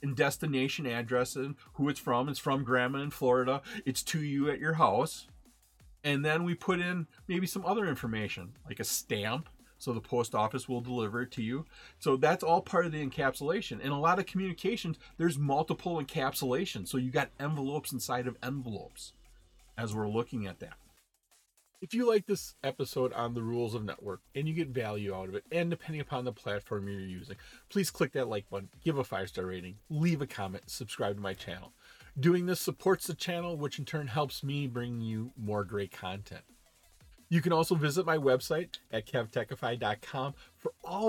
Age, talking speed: 30-49, 190 wpm